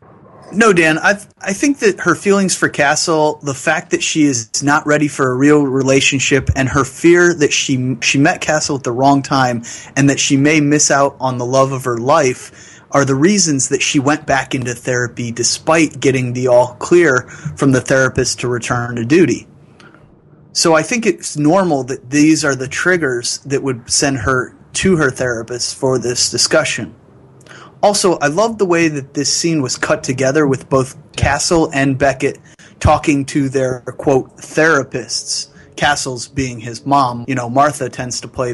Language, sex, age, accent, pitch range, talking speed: English, male, 30-49, American, 125-155 Hz, 180 wpm